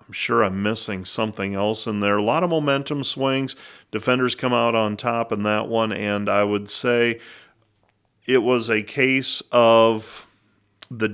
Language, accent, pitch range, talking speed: English, American, 100-120 Hz, 160 wpm